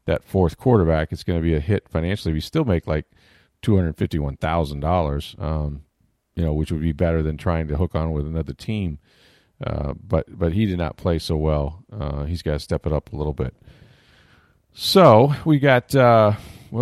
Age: 40-59